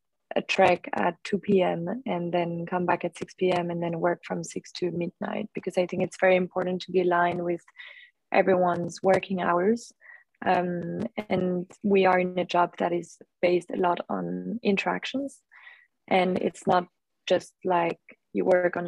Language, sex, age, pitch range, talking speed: English, female, 20-39, 175-200 Hz, 170 wpm